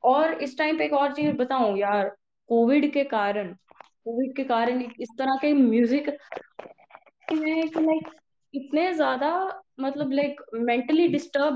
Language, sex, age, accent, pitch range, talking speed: Hindi, female, 20-39, native, 225-300 Hz, 115 wpm